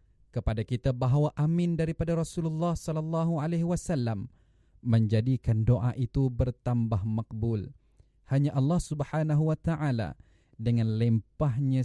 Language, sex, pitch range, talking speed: Malay, male, 115-150 Hz, 105 wpm